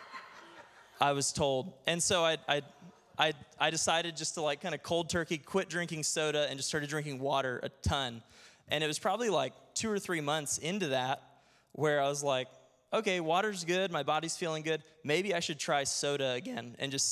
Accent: American